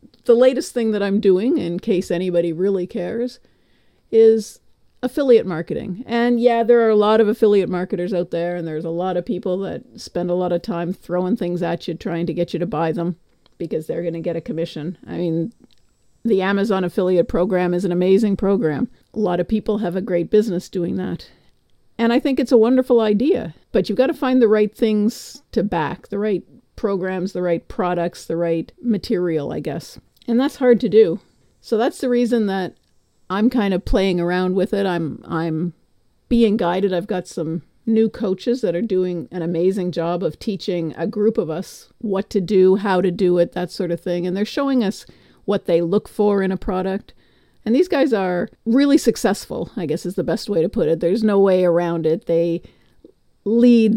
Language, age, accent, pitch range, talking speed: English, 50-69, American, 175-225 Hz, 205 wpm